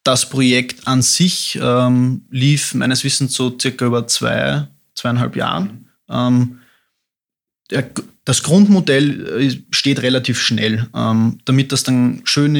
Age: 20-39